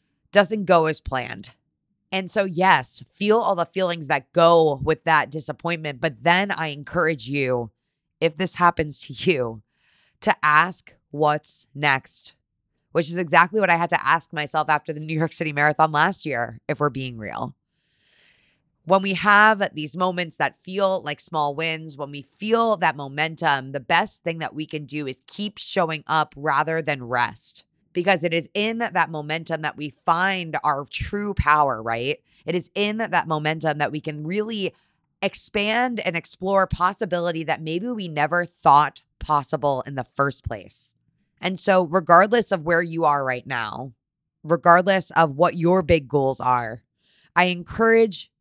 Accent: American